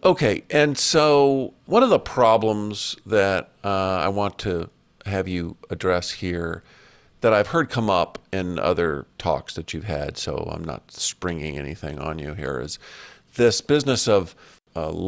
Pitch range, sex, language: 90-115 Hz, male, English